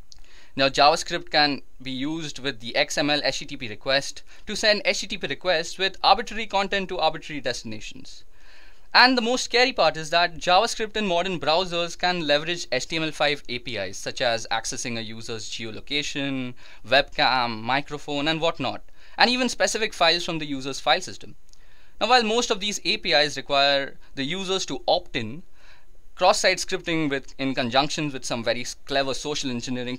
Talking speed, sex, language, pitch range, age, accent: 155 wpm, male, English, 135-185 Hz, 20-39, Indian